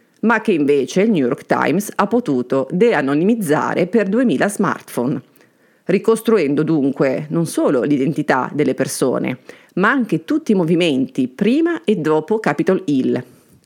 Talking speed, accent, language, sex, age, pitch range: 130 wpm, native, Italian, female, 40-59, 150-225 Hz